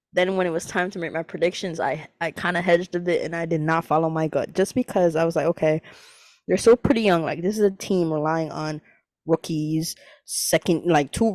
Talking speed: 225 wpm